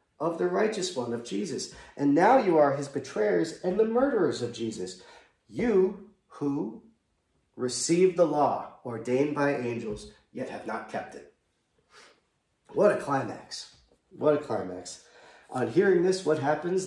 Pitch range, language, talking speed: 115-155 Hz, English, 145 wpm